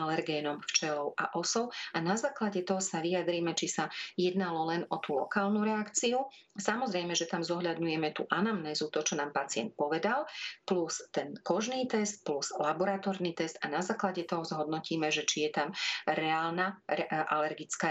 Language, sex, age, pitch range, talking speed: Slovak, female, 40-59, 155-200 Hz, 160 wpm